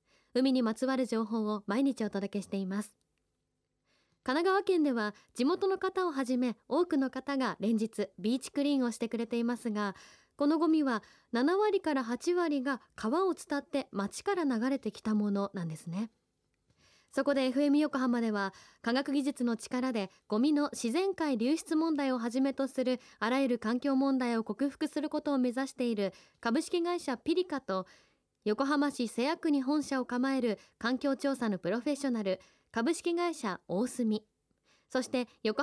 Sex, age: female, 20-39